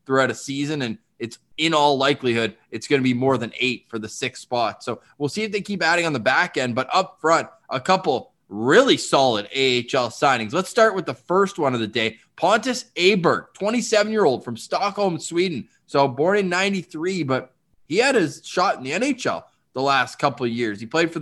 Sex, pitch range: male, 135-190 Hz